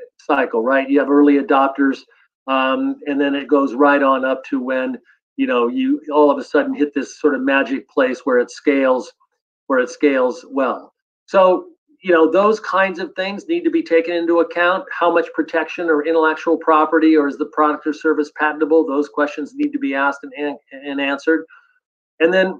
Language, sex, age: English, male, 50-69